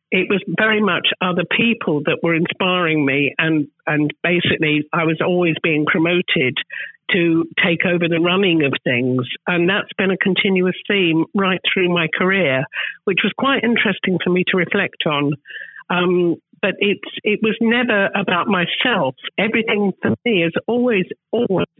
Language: English